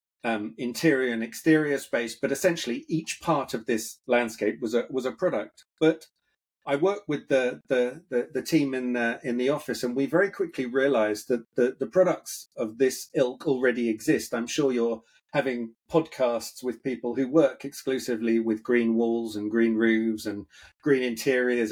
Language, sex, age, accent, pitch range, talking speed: English, male, 40-59, British, 120-150 Hz, 180 wpm